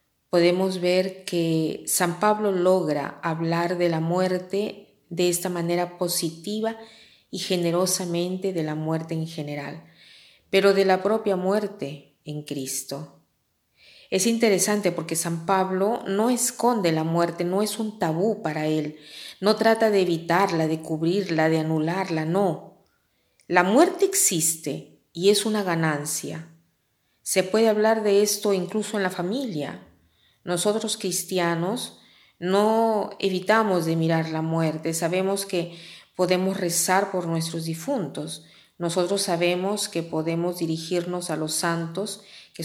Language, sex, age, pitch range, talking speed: Spanish, female, 40-59, 160-190 Hz, 130 wpm